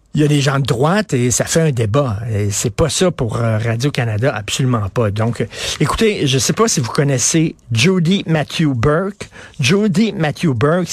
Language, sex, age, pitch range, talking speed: French, male, 50-69, 130-175 Hz, 190 wpm